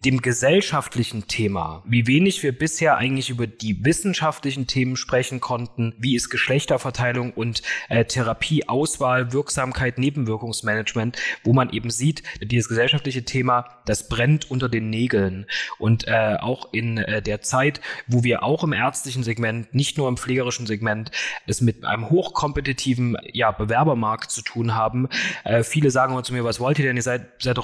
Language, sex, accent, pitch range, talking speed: German, male, German, 115-140 Hz, 165 wpm